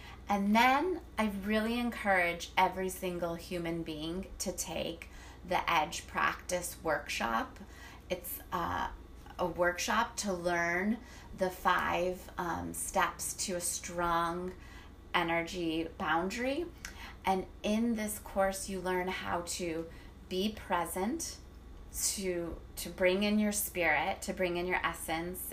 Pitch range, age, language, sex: 170-195 Hz, 30-49, English, female